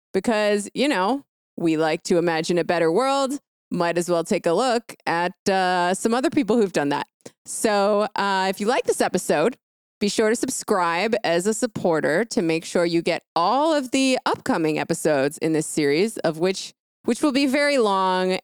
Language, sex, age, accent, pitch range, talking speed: English, female, 20-39, American, 170-235 Hz, 190 wpm